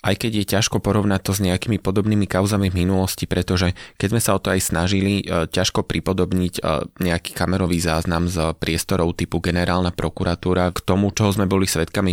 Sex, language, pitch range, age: male, Slovak, 85-95 Hz, 20-39